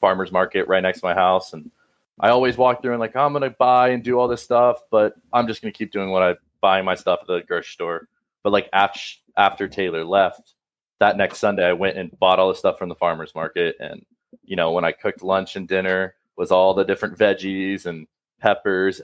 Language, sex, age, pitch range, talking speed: English, male, 20-39, 90-115 Hz, 225 wpm